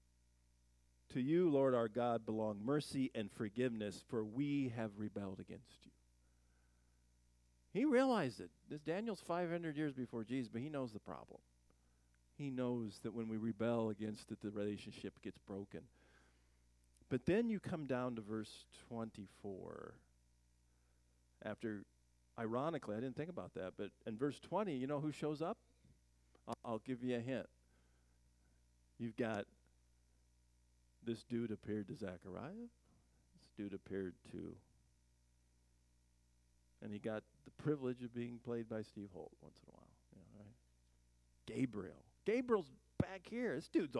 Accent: American